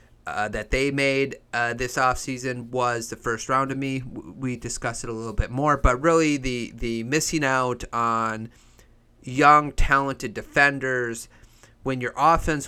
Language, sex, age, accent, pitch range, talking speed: English, male, 30-49, American, 115-140 Hz, 155 wpm